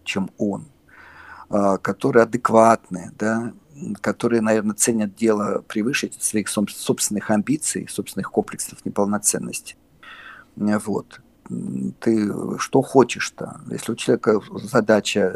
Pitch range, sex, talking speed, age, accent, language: 110-135 Hz, male, 95 wpm, 50-69, native, Russian